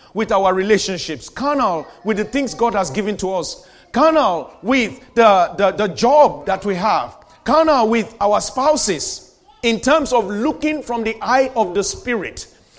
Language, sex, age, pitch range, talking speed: English, male, 40-59, 195-250 Hz, 165 wpm